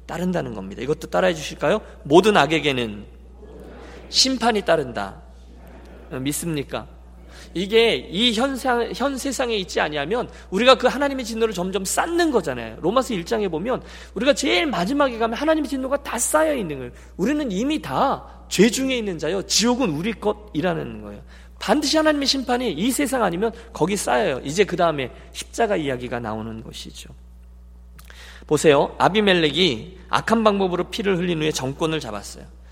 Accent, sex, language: native, male, Korean